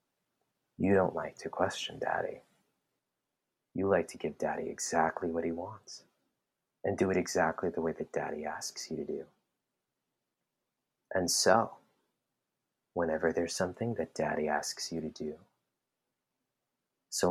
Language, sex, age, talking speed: English, male, 30-49, 135 wpm